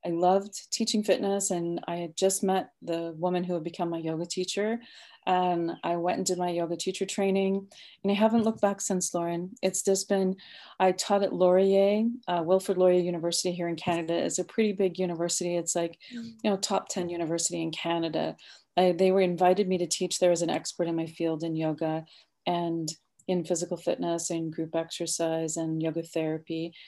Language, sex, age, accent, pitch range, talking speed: English, female, 30-49, Canadian, 170-200 Hz, 195 wpm